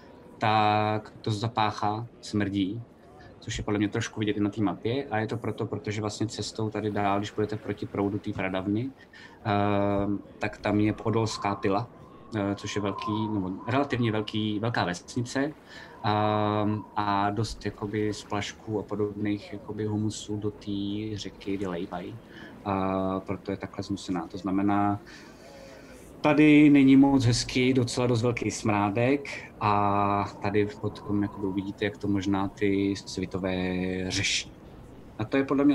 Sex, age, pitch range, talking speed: male, 20-39, 100-120 Hz, 150 wpm